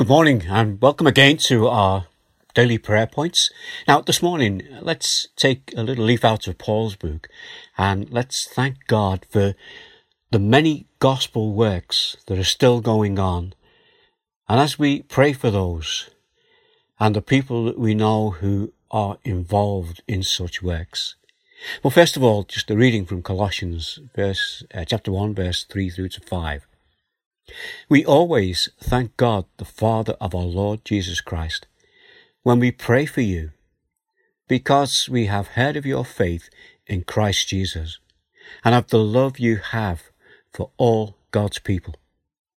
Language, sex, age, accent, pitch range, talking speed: English, male, 60-79, British, 95-130 Hz, 150 wpm